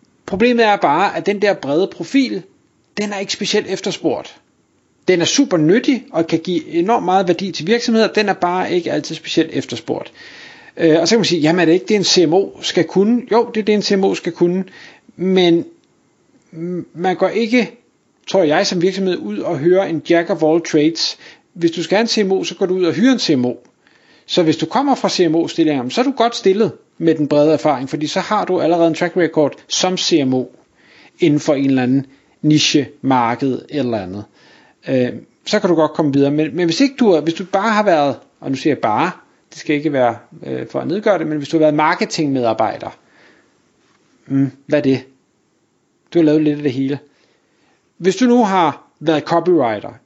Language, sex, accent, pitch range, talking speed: Danish, male, native, 150-200 Hz, 205 wpm